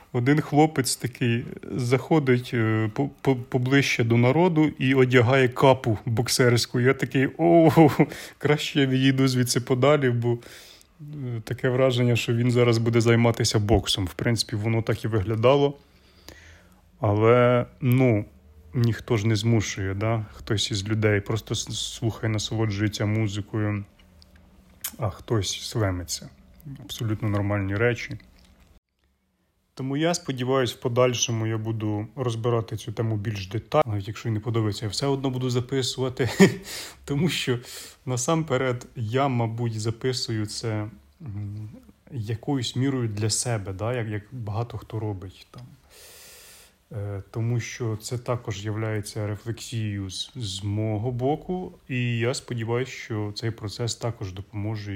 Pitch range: 105-130 Hz